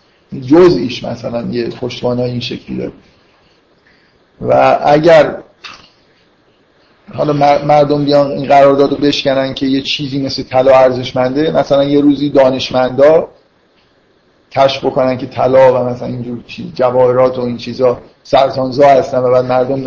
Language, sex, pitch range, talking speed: Persian, male, 130-155 Hz, 135 wpm